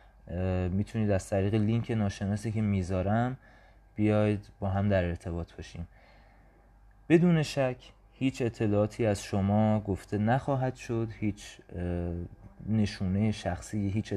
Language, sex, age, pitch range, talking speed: Persian, male, 30-49, 95-115 Hz, 110 wpm